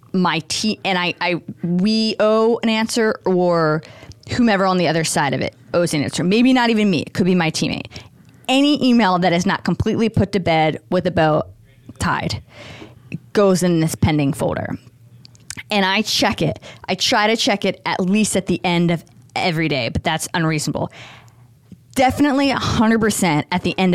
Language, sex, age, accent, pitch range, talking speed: English, female, 20-39, American, 160-205 Hz, 180 wpm